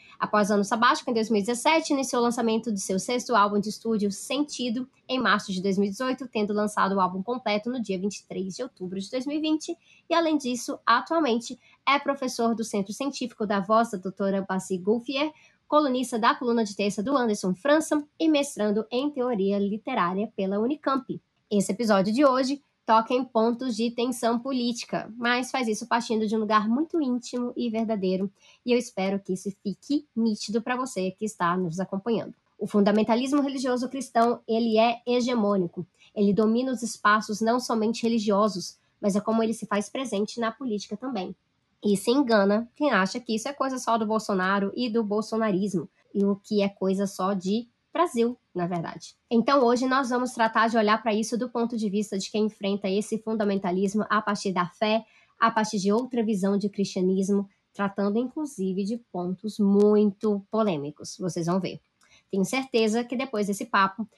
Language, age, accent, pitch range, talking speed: Portuguese, 20-39, Brazilian, 200-245 Hz, 175 wpm